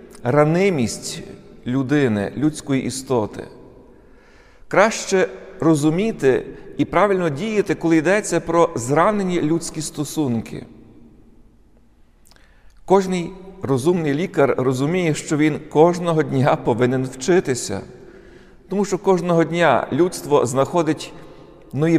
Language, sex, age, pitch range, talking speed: Ukrainian, male, 50-69, 140-175 Hz, 85 wpm